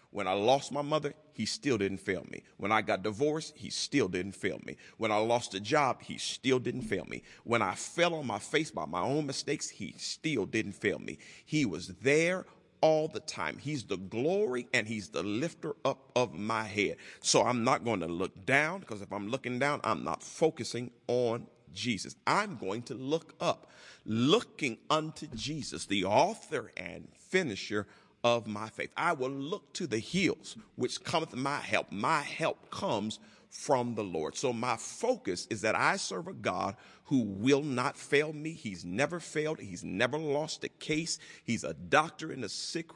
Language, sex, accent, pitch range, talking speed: English, male, American, 110-160 Hz, 190 wpm